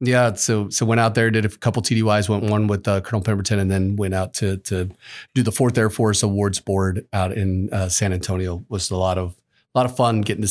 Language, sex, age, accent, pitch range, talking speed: English, male, 30-49, American, 100-115 Hz, 245 wpm